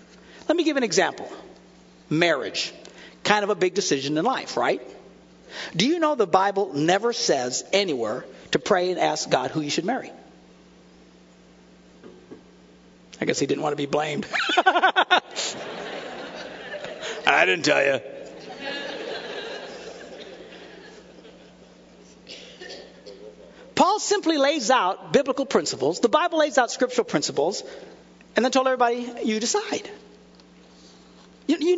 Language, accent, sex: English, American, male